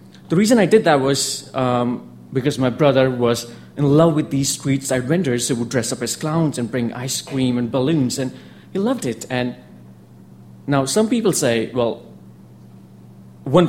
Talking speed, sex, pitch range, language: 180 wpm, male, 115-135 Hz, English